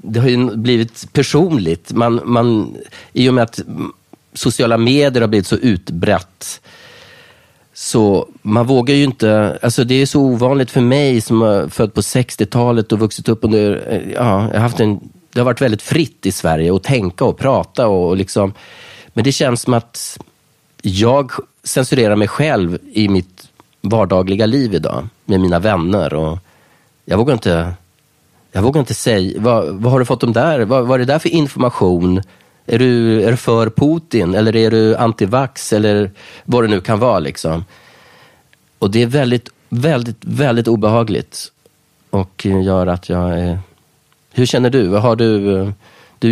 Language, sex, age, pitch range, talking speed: Swedish, male, 30-49, 100-125 Hz, 170 wpm